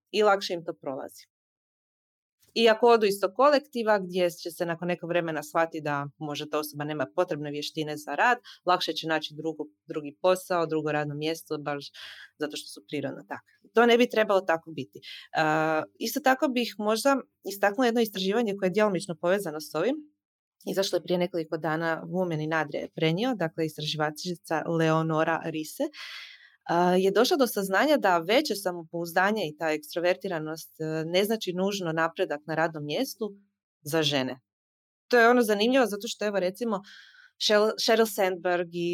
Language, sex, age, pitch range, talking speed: Croatian, female, 20-39, 155-205 Hz, 155 wpm